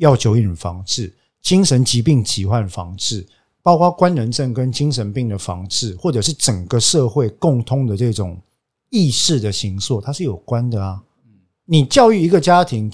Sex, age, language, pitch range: male, 50-69, Chinese, 115-175 Hz